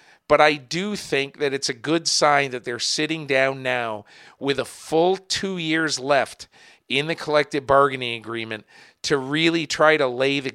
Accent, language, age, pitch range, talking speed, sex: American, English, 50-69, 125-145 Hz, 175 wpm, male